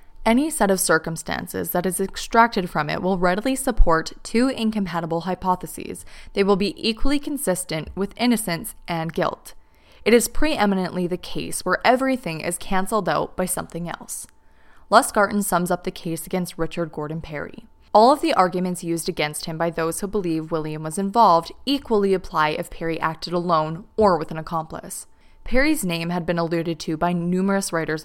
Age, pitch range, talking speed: 20-39, 165-215 Hz, 170 wpm